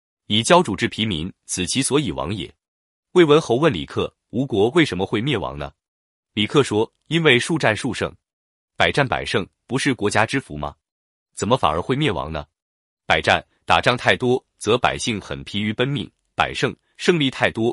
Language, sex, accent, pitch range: Chinese, male, native, 90-140 Hz